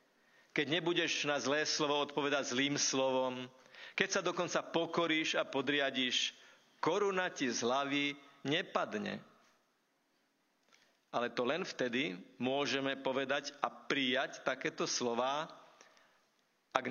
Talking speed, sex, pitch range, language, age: 105 wpm, male, 130-160 Hz, Slovak, 50-69